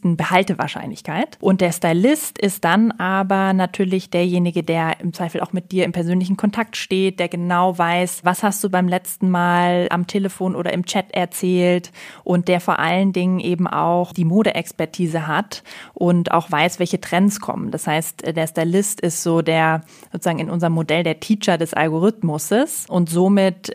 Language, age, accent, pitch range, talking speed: German, 20-39, German, 170-190 Hz, 170 wpm